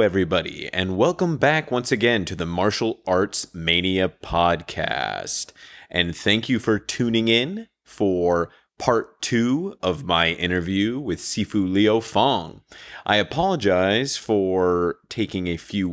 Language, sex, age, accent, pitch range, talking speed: English, male, 30-49, American, 90-120 Hz, 130 wpm